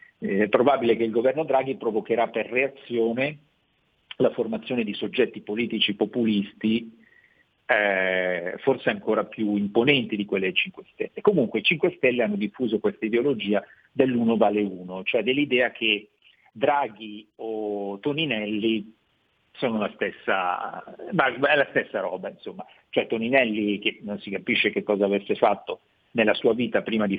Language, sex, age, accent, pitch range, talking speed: Italian, male, 50-69, native, 105-130 Hz, 140 wpm